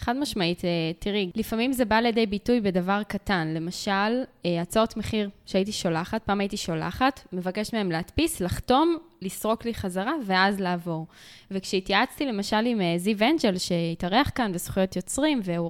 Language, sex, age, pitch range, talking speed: Hebrew, female, 10-29, 190-245 Hz, 140 wpm